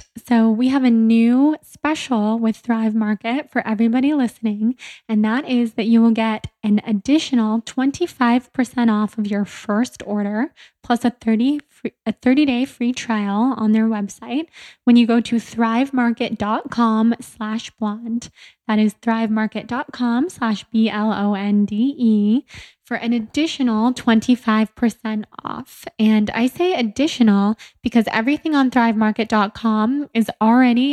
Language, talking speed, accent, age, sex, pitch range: English, 125 wpm, American, 10-29, female, 215-245 Hz